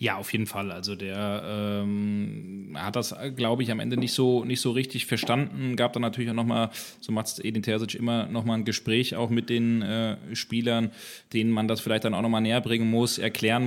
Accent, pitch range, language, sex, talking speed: German, 110-125 Hz, German, male, 215 wpm